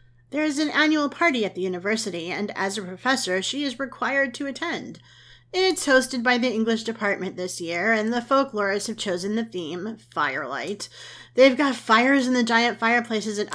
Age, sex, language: 30-49, female, English